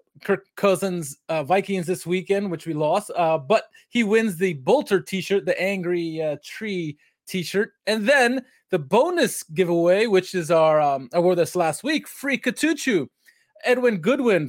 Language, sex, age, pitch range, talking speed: English, male, 20-39, 150-200 Hz, 160 wpm